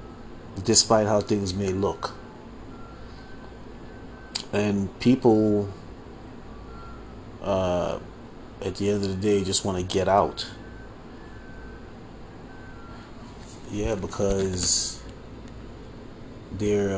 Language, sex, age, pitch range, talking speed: English, male, 30-49, 100-120 Hz, 80 wpm